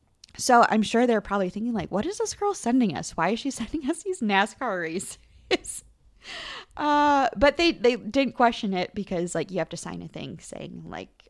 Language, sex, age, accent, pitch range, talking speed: English, female, 20-39, American, 170-230 Hz, 200 wpm